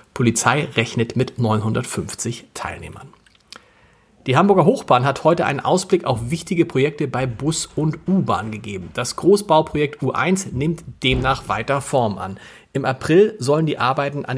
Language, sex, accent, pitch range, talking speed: German, male, German, 125-165 Hz, 140 wpm